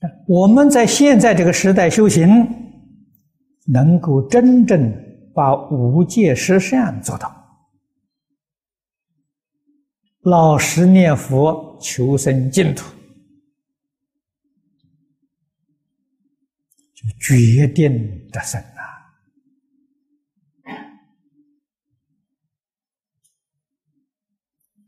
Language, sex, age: Chinese, male, 60-79